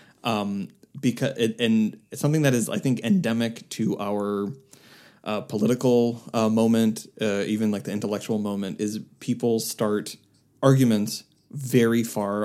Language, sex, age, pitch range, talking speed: English, male, 20-39, 105-135 Hz, 130 wpm